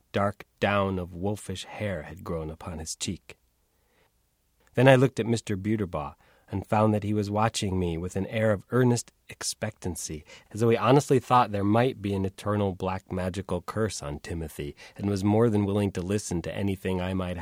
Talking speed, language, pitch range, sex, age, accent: 190 wpm, English, 80-105 Hz, male, 30-49, American